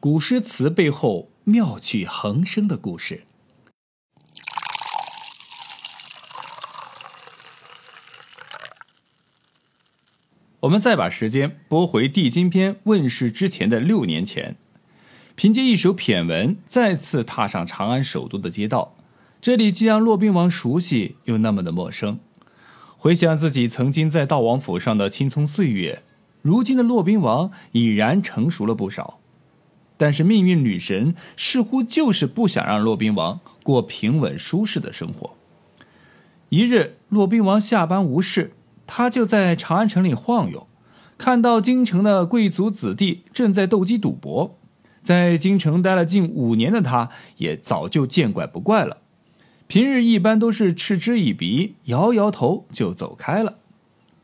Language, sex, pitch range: Chinese, male, 155-220 Hz